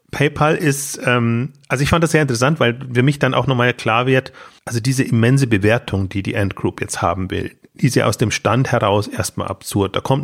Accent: German